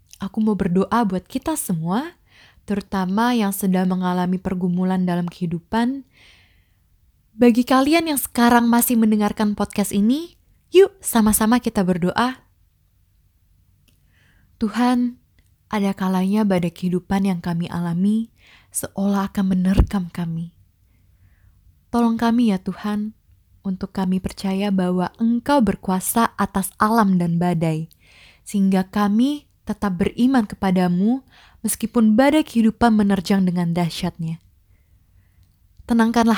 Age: 20-39